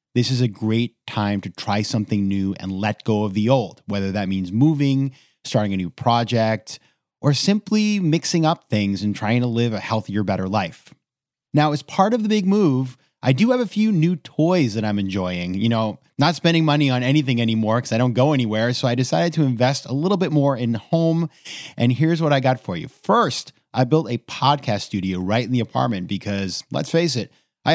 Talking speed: 215 wpm